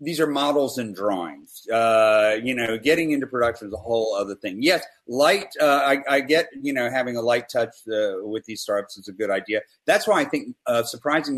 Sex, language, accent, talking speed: male, English, American, 220 wpm